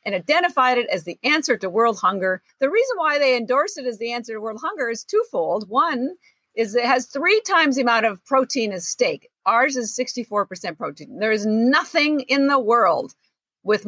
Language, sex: English, female